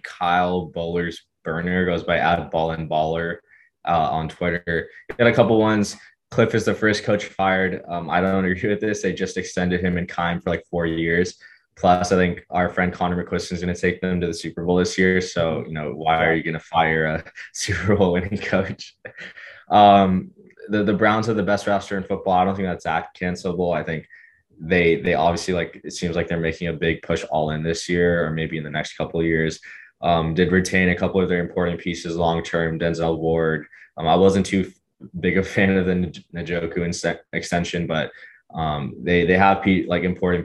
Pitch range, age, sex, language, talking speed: 85-95 Hz, 20-39, male, English, 210 wpm